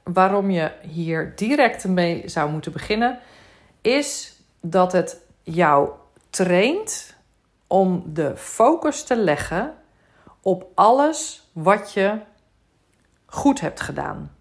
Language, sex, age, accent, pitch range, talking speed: Dutch, female, 40-59, Dutch, 165-220 Hz, 105 wpm